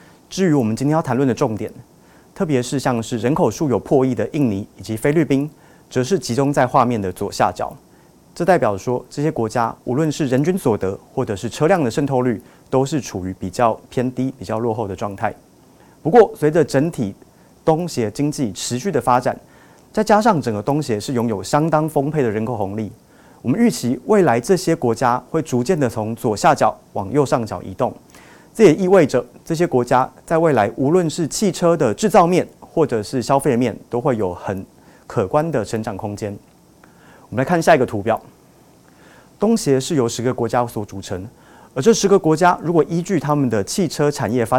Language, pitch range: Chinese, 115-155 Hz